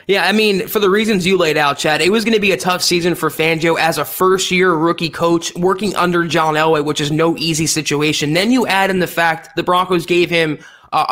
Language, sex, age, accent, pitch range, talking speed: English, male, 20-39, American, 155-185 Hz, 245 wpm